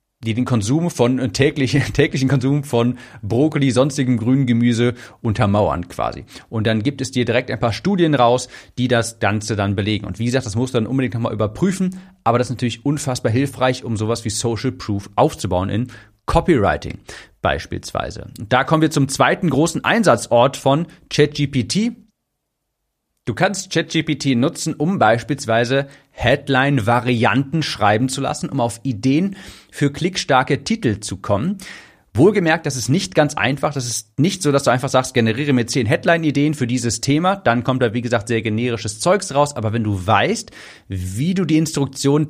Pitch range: 115-145 Hz